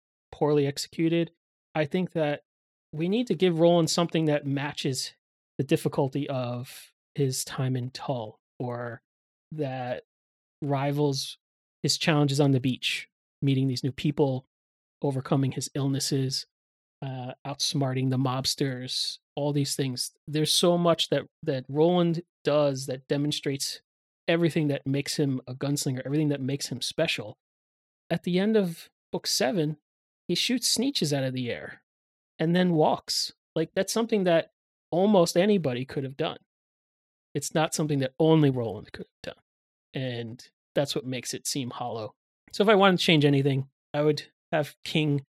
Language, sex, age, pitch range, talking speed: English, male, 30-49, 130-155 Hz, 150 wpm